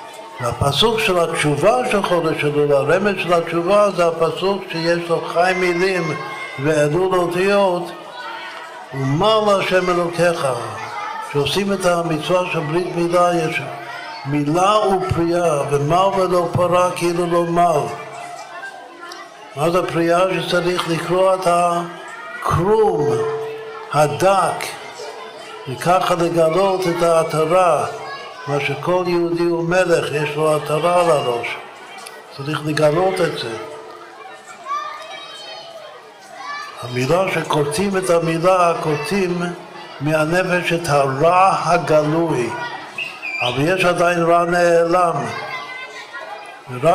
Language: Hebrew